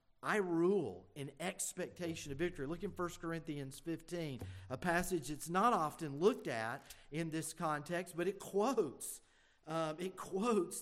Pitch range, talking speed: 150-185 Hz, 150 wpm